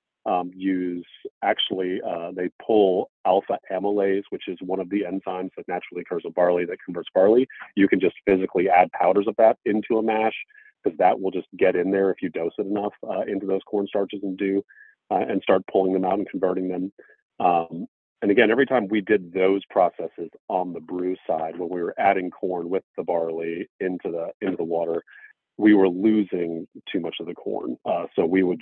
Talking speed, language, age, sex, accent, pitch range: 210 wpm, English, 40-59, male, American, 90-105 Hz